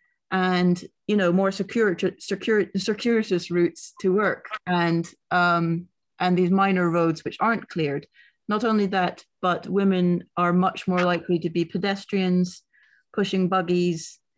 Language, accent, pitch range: English, British, 170-200 Hz